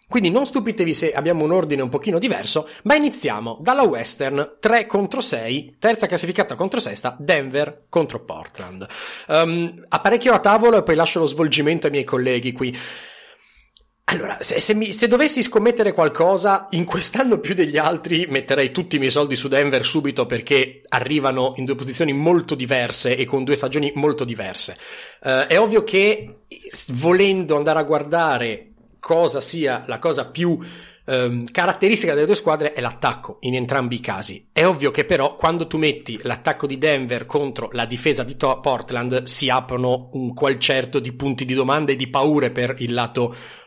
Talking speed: 165 wpm